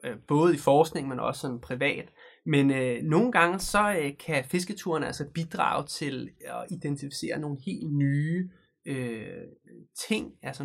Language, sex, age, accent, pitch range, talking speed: Danish, male, 20-39, native, 140-175 Hz, 145 wpm